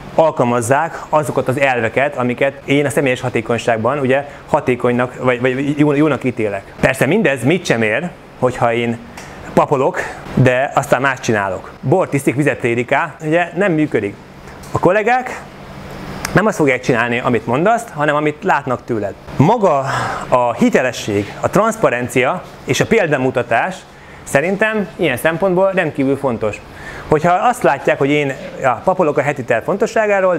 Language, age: Hungarian, 30-49